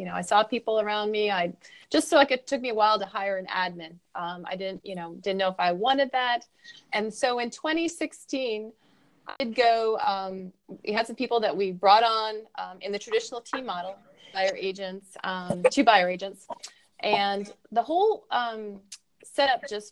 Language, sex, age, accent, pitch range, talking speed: English, female, 30-49, American, 190-230 Hz, 195 wpm